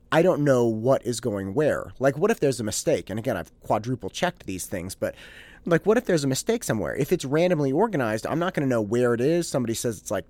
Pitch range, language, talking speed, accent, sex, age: 90-140 Hz, English, 255 wpm, American, male, 30-49